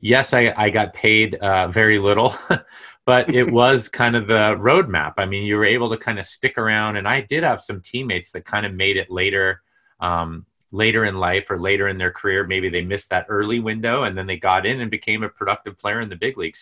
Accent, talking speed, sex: American, 240 wpm, male